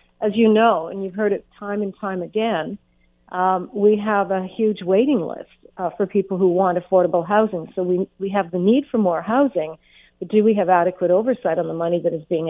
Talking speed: 220 wpm